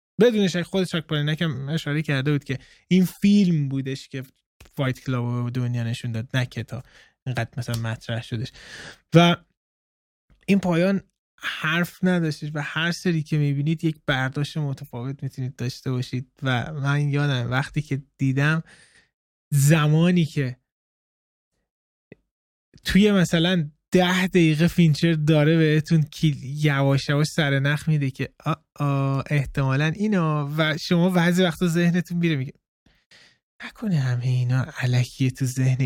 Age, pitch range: 20-39, 130-170 Hz